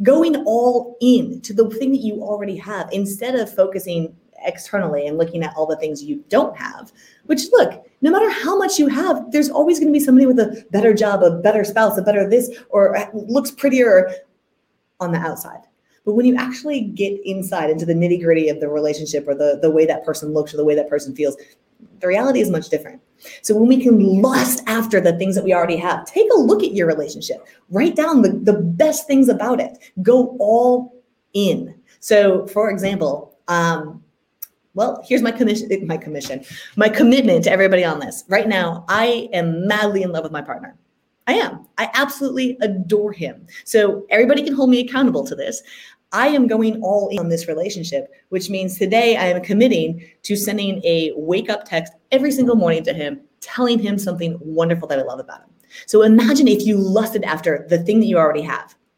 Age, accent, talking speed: 30-49, American, 200 wpm